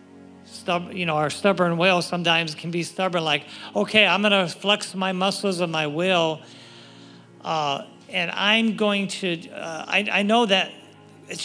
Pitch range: 170-230 Hz